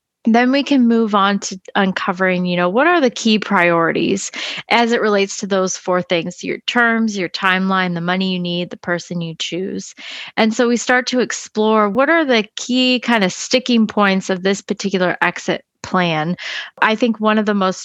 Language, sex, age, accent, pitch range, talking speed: English, female, 20-39, American, 180-225 Hz, 195 wpm